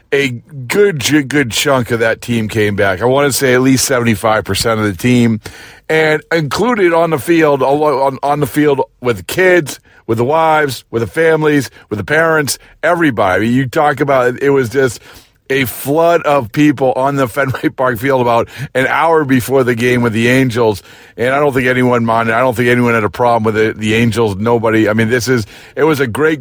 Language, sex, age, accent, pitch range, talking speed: English, male, 50-69, American, 115-140 Hz, 210 wpm